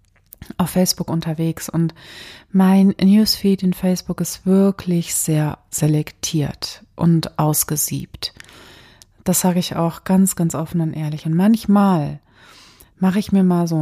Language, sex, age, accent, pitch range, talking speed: German, female, 30-49, German, 150-190 Hz, 130 wpm